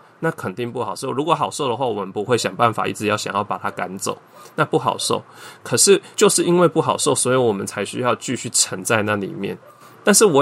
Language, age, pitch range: Chinese, 20-39, 100-130 Hz